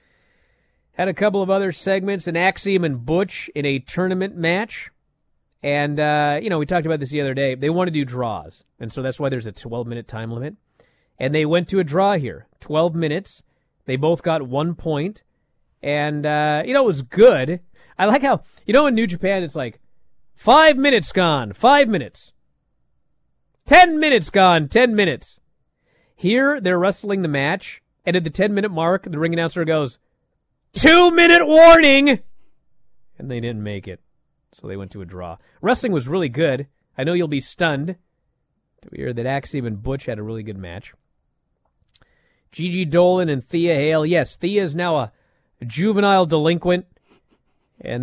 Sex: male